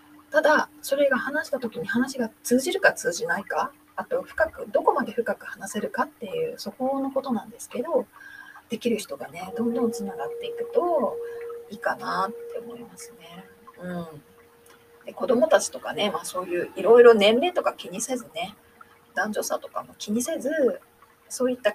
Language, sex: Japanese, female